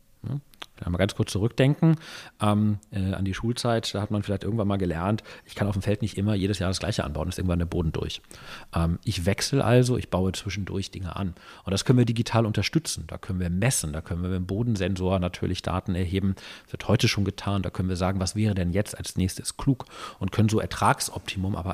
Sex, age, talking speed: male, 40-59, 230 wpm